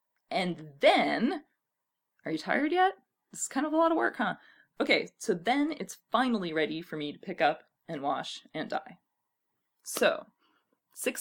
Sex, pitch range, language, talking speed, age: female, 170-250 Hz, English, 170 wpm, 20-39